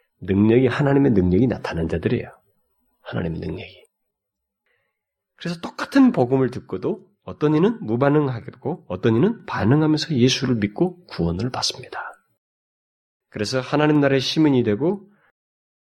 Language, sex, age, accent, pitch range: Korean, male, 30-49, native, 110-150 Hz